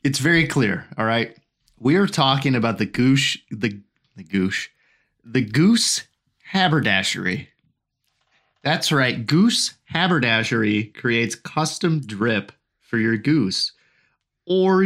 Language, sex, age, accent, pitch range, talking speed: English, male, 30-49, American, 105-145 Hz, 115 wpm